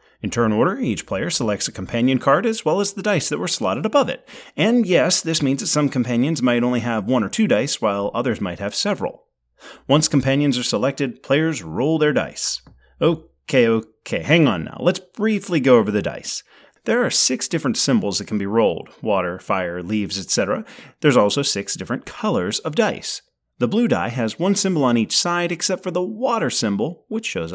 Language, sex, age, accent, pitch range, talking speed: English, male, 30-49, American, 120-200 Hz, 205 wpm